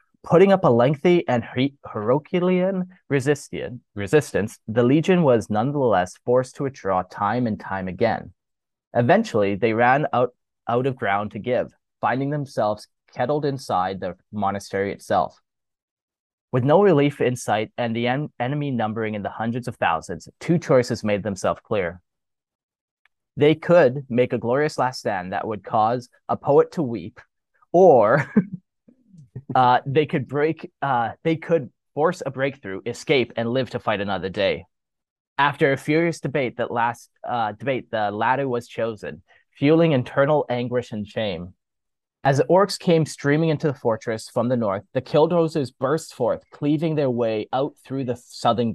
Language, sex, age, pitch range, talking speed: English, male, 20-39, 110-150 Hz, 155 wpm